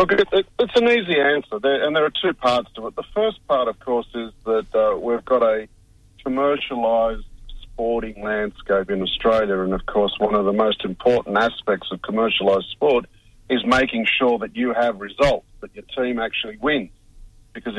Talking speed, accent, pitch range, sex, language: 180 wpm, Australian, 105-135 Hz, male, English